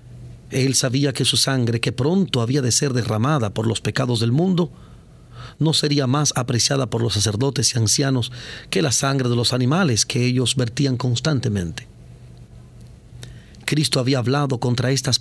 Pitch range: 120-145 Hz